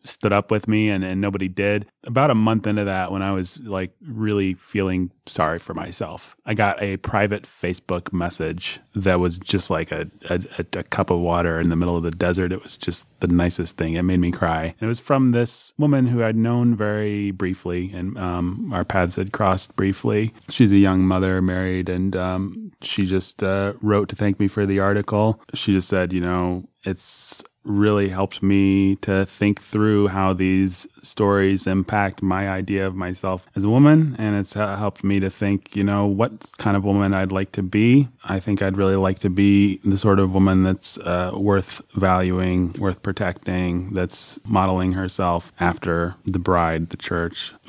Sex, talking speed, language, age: male, 195 wpm, English, 30-49